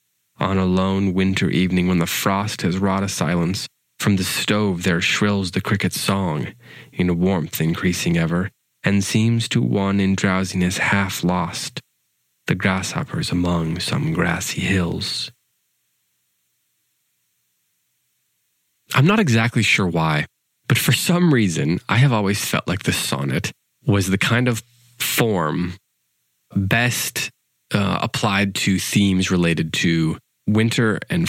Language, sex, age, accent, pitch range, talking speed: English, male, 20-39, American, 90-110 Hz, 130 wpm